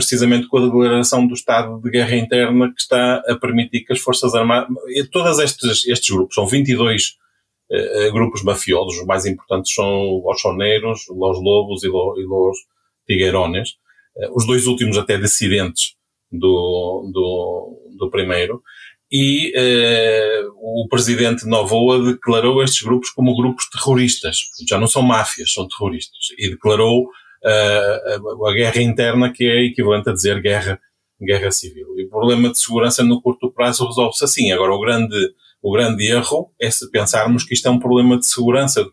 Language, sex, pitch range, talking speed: Portuguese, male, 110-135 Hz, 160 wpm